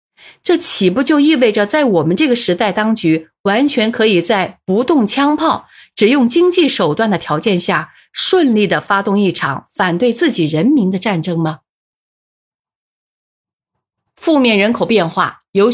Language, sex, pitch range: Chinese, female, 175-240 Hz